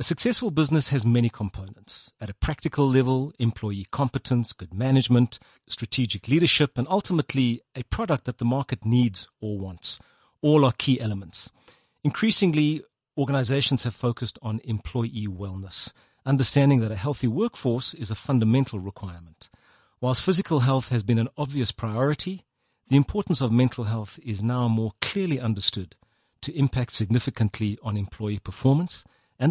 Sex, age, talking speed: male, 40-59, 145 wpm